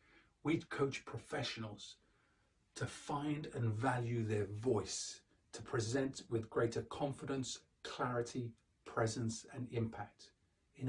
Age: 40-59